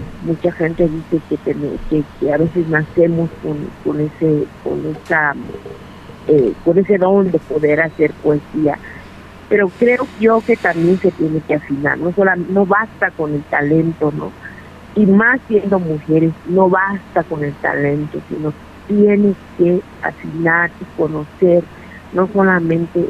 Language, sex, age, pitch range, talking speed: Spanish, female, 50-69, 155-190 Hz, 150 wpm